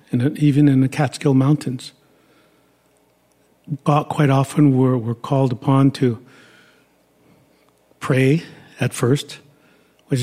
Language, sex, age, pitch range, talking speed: English, male, 50-69, 130-145 Hz, 100 wpm